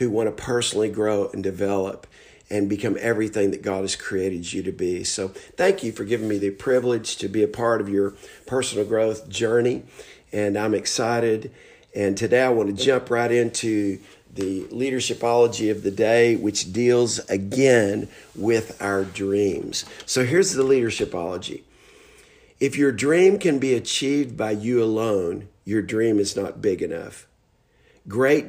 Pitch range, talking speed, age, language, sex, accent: 100-130 Hz, 160 wpm, 50-69, English, male, American